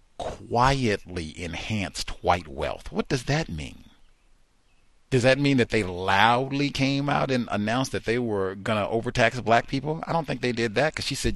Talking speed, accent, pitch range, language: 180 wpm, American, 115-185 Hz, English